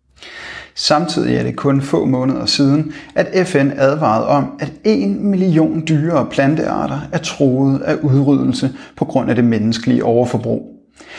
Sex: male